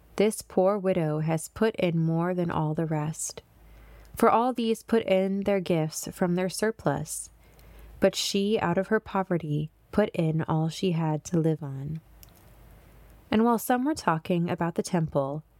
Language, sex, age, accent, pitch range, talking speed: English, female, 20-39, American, 160-200 Hz, 165 wpm